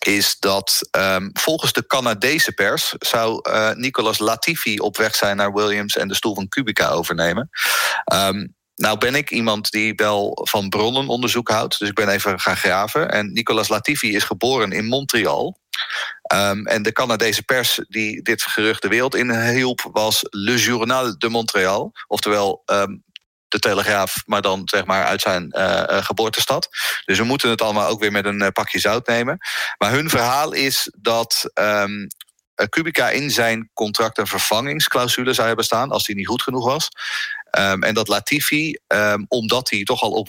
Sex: male